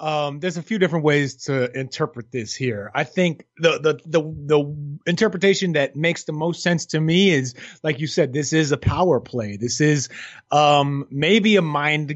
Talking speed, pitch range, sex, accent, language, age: 195 wpm, 145-190 Hz, male, American, English, 30-49